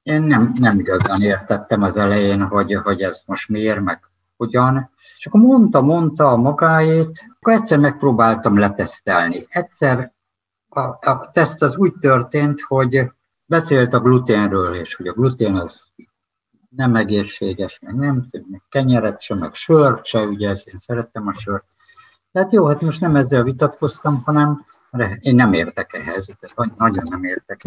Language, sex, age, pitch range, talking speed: Hungarian, male, 60-79, 100-145 Hz, 155 wpm